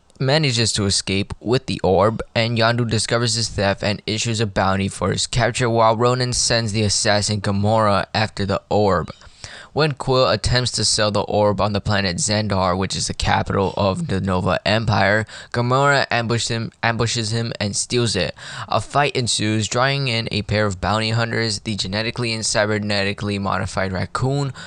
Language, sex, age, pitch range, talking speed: English, male, 10-29, 100-125 Hz, 170 wpm